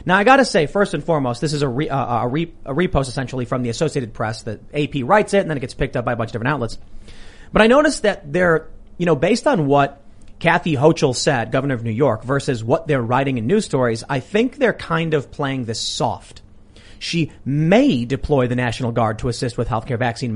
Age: 30-49